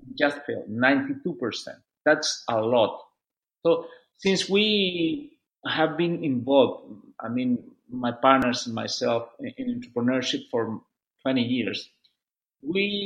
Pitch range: 145-215 Hz